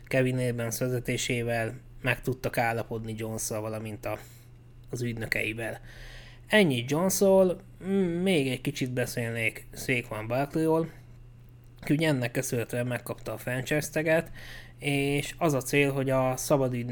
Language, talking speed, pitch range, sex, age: Hungarian, 105 wpm, 120-140 Hz, male, 20-39